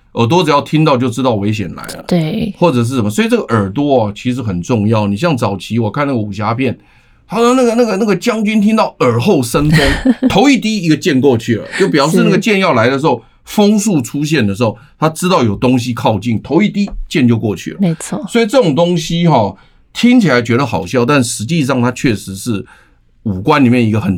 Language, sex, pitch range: Chinese, male, 115-175 Hz